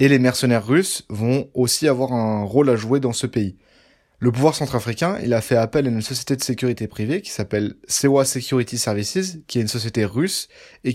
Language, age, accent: French, 20-39, French